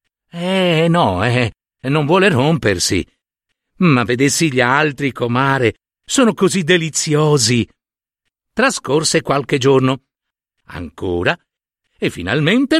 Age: 60-79